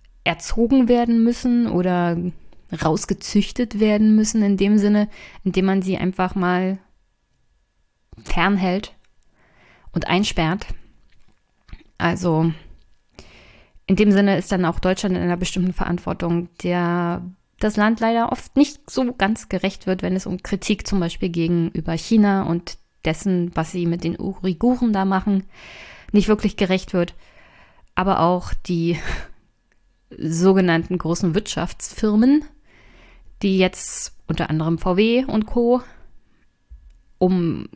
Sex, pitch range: female, 180-210 Hz